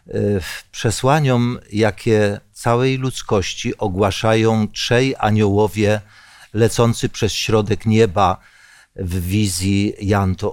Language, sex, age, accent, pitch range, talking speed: Polish, male, 50-69, native, 105-135 Hz, 90 wpm